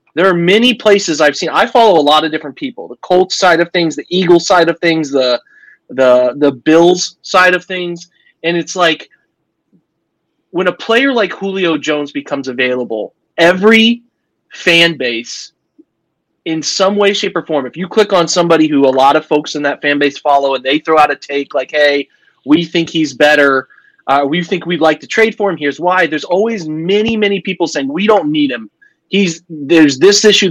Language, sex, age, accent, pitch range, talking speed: English, male, 30-49, American, 155-205 Hz, 200 wpm